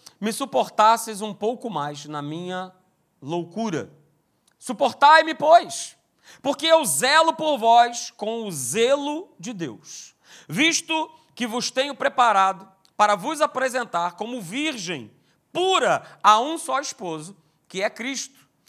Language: Portuguese